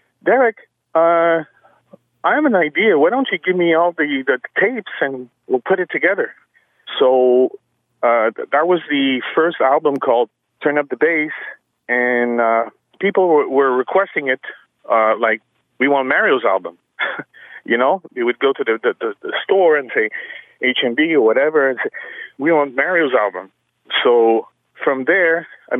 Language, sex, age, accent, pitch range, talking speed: English, male, 30-49, American, 135-200 Hz, 165 wpm